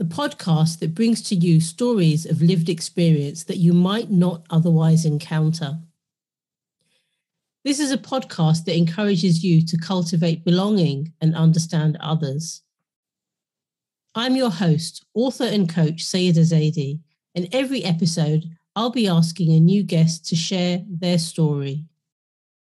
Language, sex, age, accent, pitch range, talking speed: English, female, 40-59, British, 155-185 Hz, 130 wpm